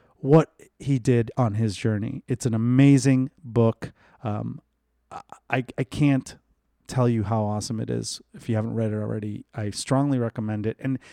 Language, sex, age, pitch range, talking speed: English, male, 30-49, 105-130 Hz, 165 wpm